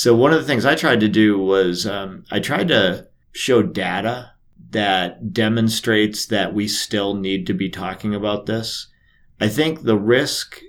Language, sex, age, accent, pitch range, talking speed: English, male, 40-59, American, 100-120 Hz, 175 wpm